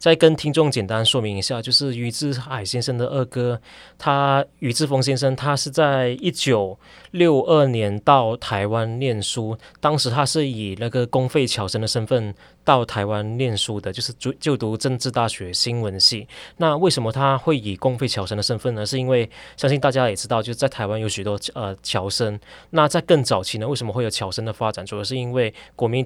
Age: 20-39